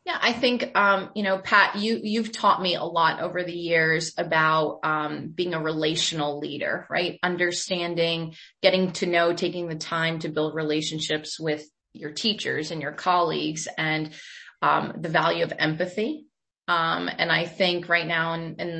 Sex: female